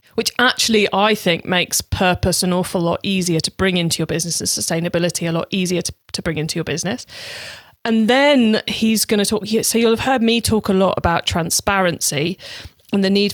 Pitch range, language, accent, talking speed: 175-220 Hz, English, British, 205 wpm